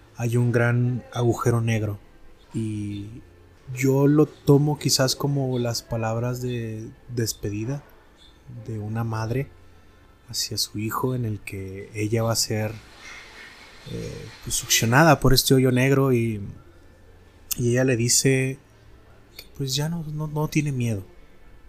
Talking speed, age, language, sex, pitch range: 135 wpm, 20-39, Spanish, male, 110-130 Hz